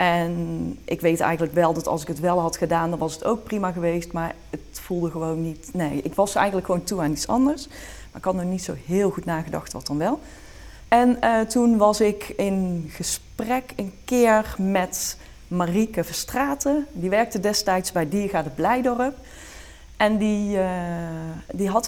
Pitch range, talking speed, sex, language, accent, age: 170-215 Hz, 185 wpm, female, Dutch, Dutch, 30-49